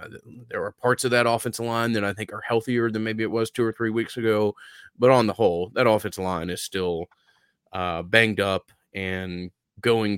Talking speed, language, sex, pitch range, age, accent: 205 wpm, English, male, 95-110 Hz, 30-49, American